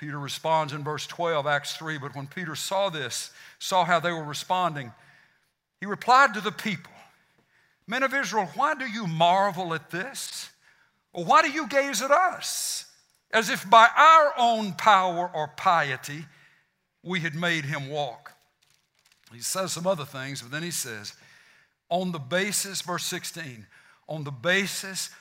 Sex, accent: male, American